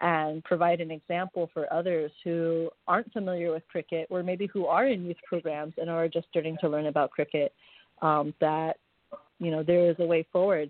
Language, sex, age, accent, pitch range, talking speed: English, female, 30-49, American, 155-180 Hz, 195 wpm